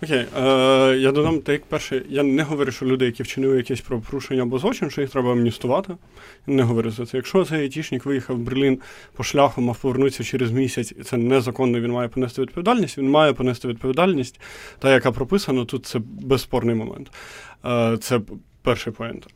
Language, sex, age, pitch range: Ukrainian, male, 30-49, 120-140 Hz